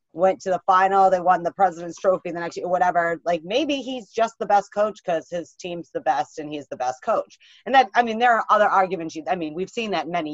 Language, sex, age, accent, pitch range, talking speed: English, female, 30-49, American, 160-210 Hz, 255 wpm